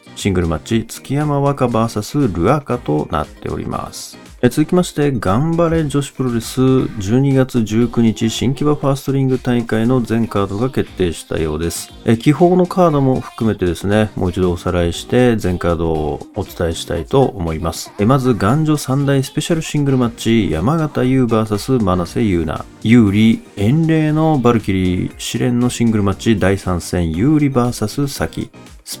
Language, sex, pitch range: Japanese, male, 100-135 Hz